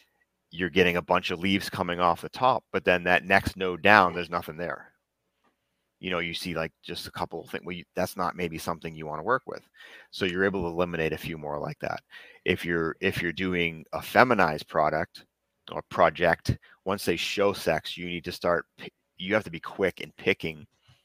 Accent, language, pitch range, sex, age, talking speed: American, English, 80-90 Hz, male, 30-49, 210 wpm